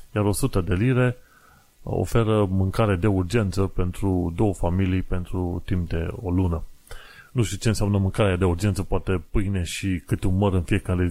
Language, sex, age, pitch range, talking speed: Romanian, male, 30-49, 90-105 Hz, 160 wpm